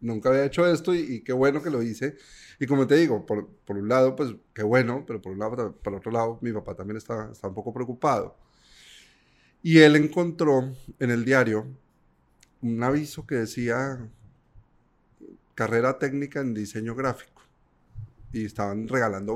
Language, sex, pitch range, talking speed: Spanish, male, 105-125 Hz, 170 wpm